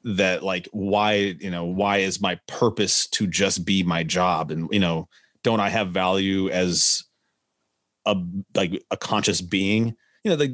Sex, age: male, 30-49